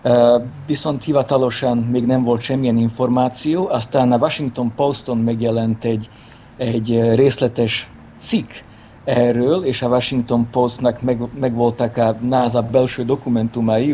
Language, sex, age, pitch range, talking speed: Hungarian, male, 50-69, 115-130 Hz, 115 wpm